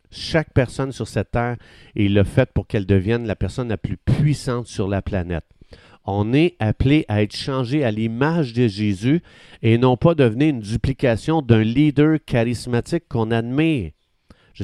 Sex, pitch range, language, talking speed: male, 105-140 Hz, French, 170 wpm